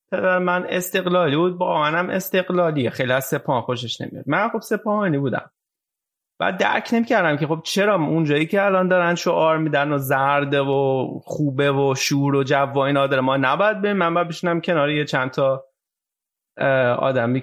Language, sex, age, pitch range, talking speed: Persian, male, 30-49, 135-175 Hz, 170 wpm